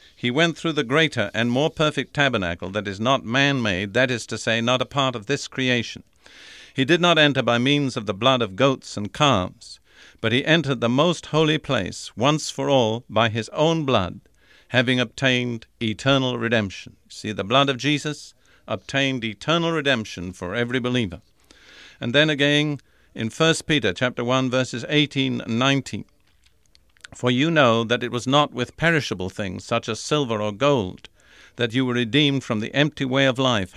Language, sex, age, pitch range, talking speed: English, male, 50-69, 110-140 Hz, 180 wpm